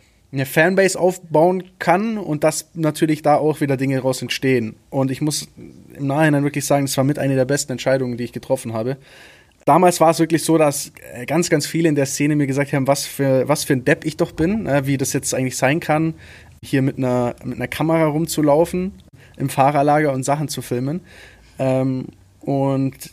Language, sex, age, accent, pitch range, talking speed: German, male, 20-39, German, 135-155 Hz, 195 wpm